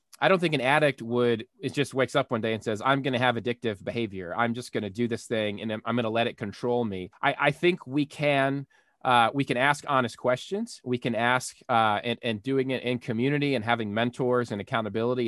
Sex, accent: male, American